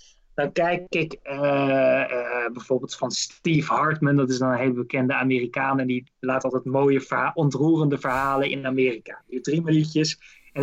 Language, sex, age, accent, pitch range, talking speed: English, male, 20-39, Dutch, 135-170 Hz, 165 wpm